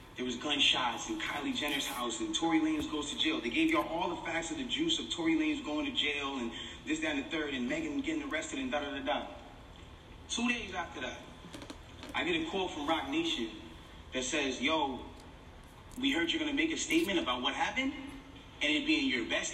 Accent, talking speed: American, 220 wpm